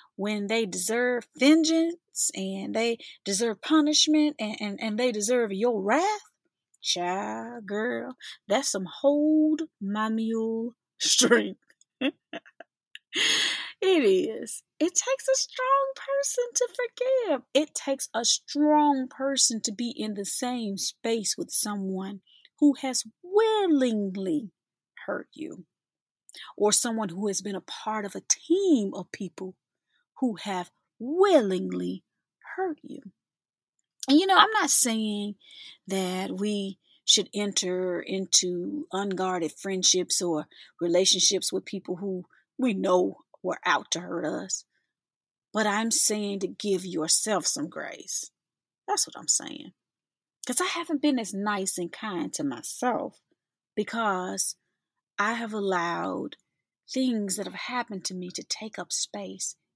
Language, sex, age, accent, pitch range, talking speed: English, female, 30-49, American, 195-290 Hz, 130 wpm